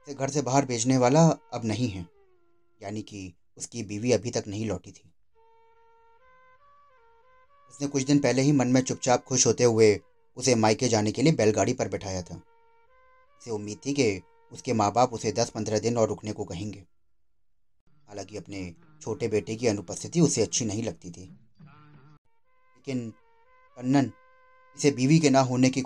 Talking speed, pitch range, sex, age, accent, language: 165 wpm, 105-155 Hz, male, 30-49, native, Hindi